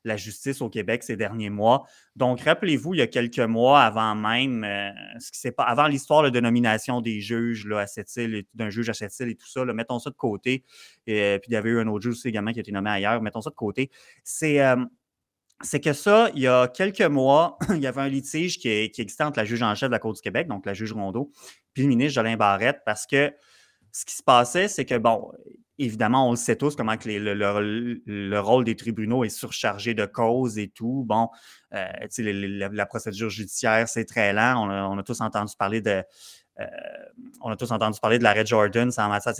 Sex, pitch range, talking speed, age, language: male, 110-140 Hz, 240 wpm, 30-49, French